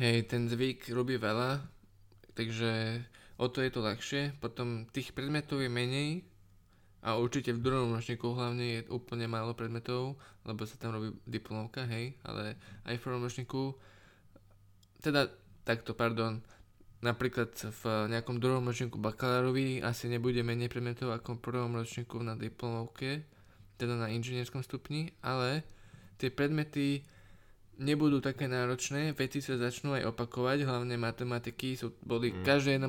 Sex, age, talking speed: male, 20-39, 140 wpm